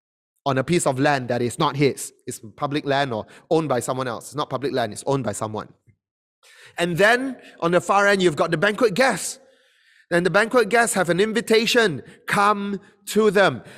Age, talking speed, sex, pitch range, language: 30-49, 200 wpm, male, 165-225 Hz, English